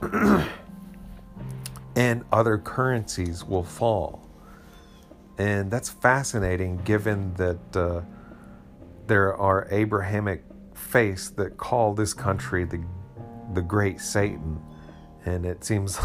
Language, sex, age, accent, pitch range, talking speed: English, male, 40-59, American, 90-120 Hz, 95 wpm